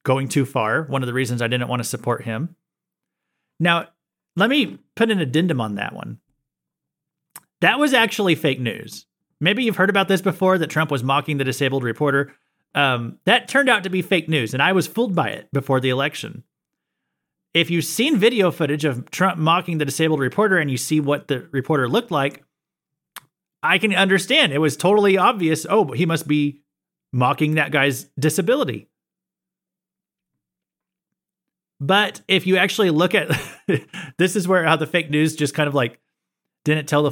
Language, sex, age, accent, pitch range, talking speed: English, male, 30-49, American, 140-185 Hz, 180 wpm